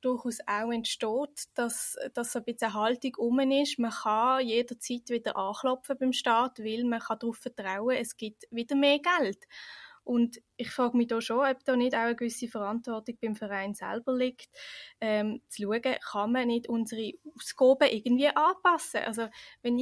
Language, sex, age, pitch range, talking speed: German, female, 20-39, 225-260 Hz, 175 wpm